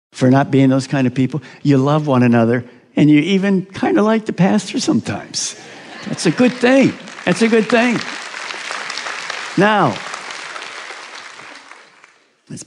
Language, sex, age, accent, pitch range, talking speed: English, male, 60-79, American, 135-225 Hz, 140 wpm